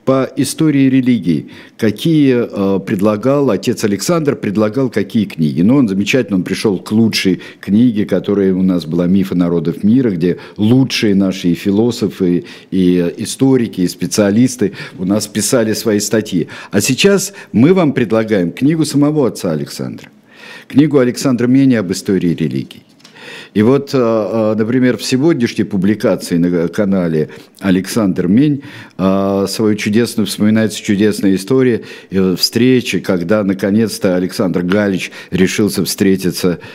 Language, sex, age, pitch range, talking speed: Russian, male, 50-69, 90-120 Hz, 125 wpm